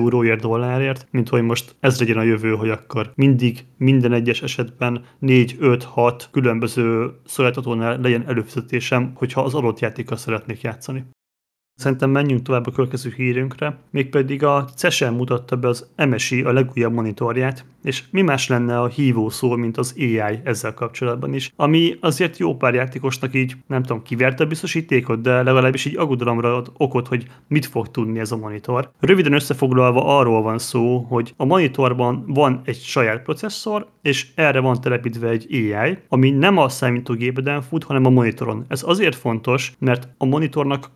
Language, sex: Hungarian, male